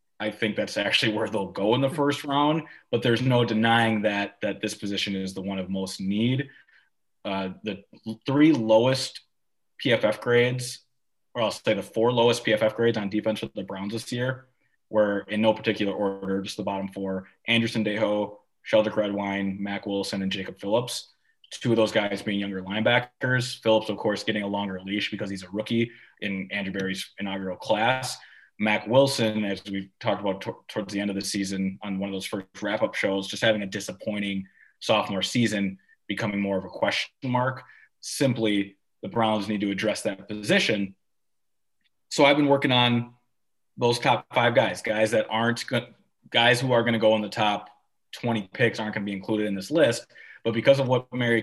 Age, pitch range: 20-39, 100-120 Hz